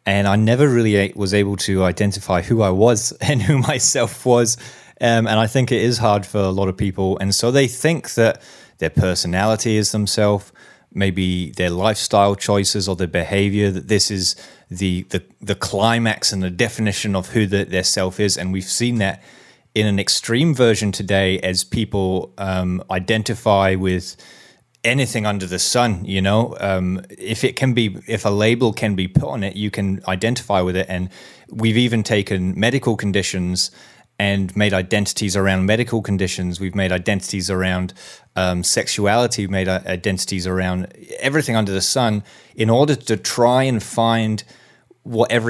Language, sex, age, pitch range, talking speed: English, male, 20-39, 95-115 Hz, 170 wpm